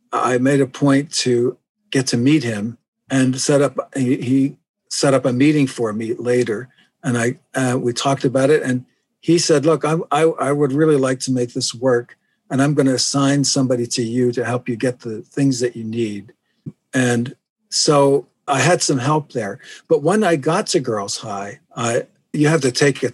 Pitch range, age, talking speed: 120-145 Hz, 50-69, 200 wpm